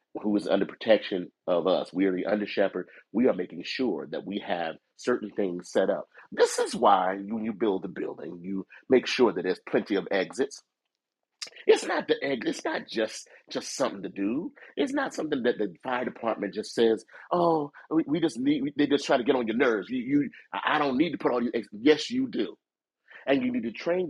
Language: English